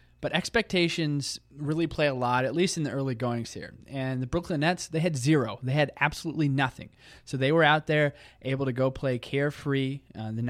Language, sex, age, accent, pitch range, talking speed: English, male, 20-39, American, 120-145 Hz, 200 wpm